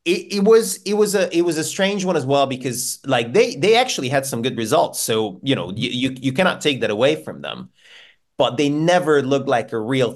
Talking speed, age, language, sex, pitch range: 240 wpm, 30-49, English, male, 110-145 Hz